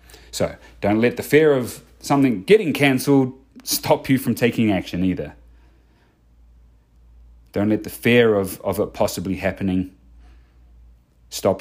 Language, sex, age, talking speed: English, male, 30-49, 130 wpm